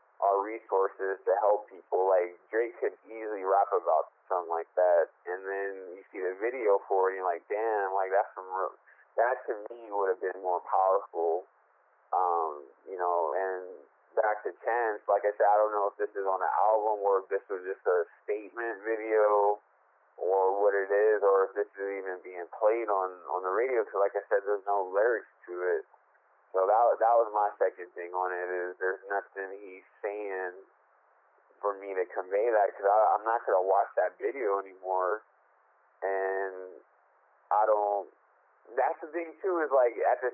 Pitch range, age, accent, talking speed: 95-115 Hz, 20-39, American, 190 wpm